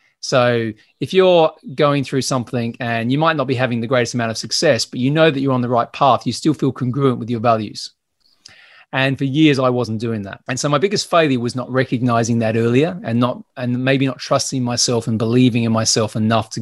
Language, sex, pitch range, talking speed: English, male, 115-135 Hz, 230 wpm